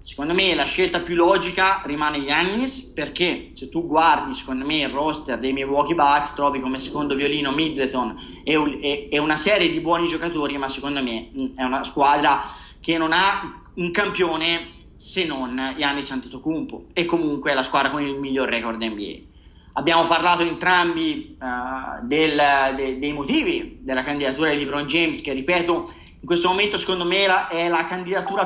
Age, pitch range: 20-39, 150-200 Hz